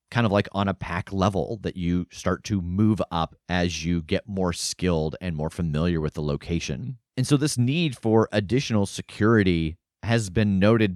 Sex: male